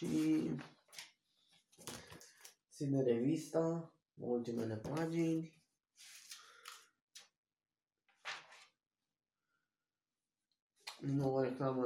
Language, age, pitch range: Romanian, 20-39, 120-160 Hz